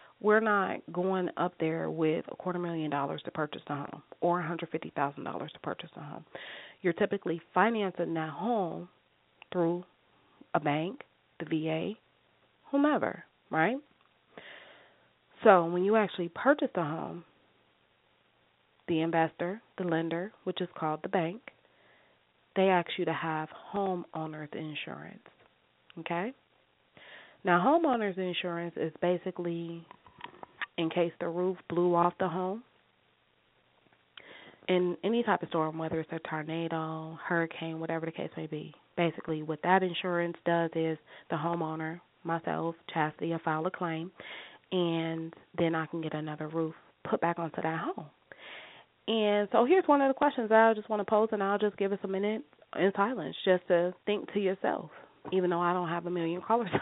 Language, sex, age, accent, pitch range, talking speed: English, female, 30-49, American, 165-195 Hz, 155 wpm